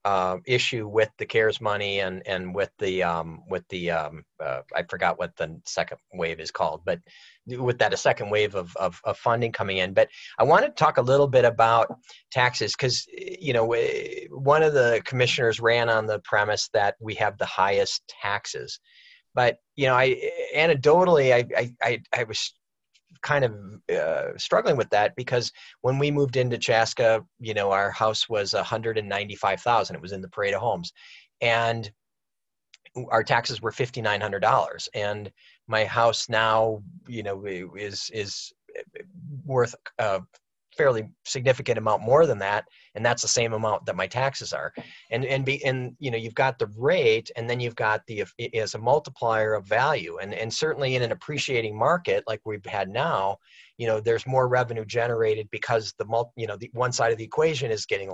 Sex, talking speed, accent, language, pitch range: male, 180 wpm, American, English, 110-140 Hz